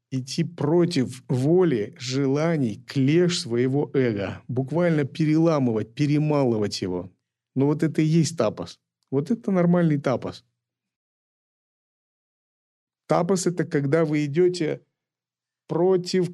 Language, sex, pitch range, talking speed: Russian, male, 125-165 Hz, 100 wpm